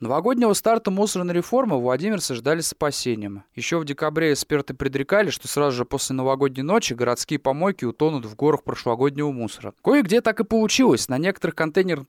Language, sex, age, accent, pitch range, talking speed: Russian, male, 20-39, native, 135-190 Hz, 165 wpm